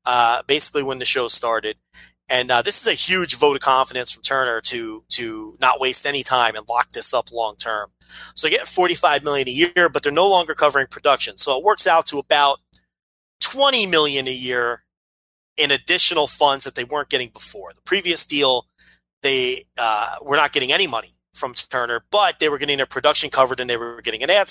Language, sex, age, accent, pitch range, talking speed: English, male, 30-49, American, 130-175 Hz, 205 wpm